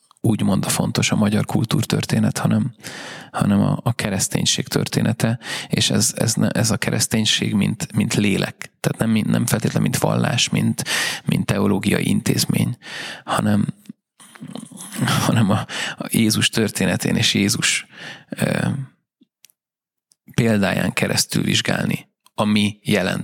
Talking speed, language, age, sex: 120 wpm, Hungarian, 30-49, male